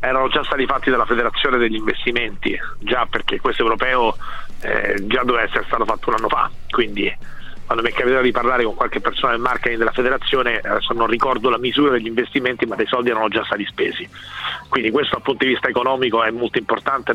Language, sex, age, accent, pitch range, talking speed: Italian, male, 40-59, native, 110-125 Hz, 205 wpm